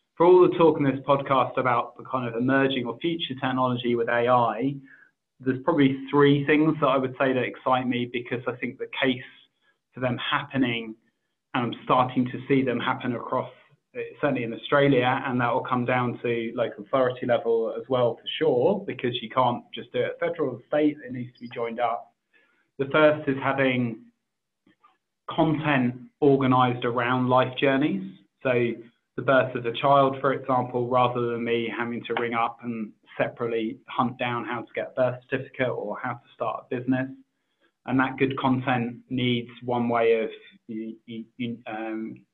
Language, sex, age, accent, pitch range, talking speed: English, male, 20-39, British, 120-135 Hz, 185 wpm